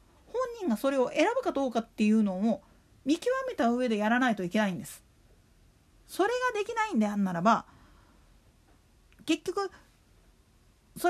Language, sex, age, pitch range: Japanese, female, 40-59, 215-330 Hz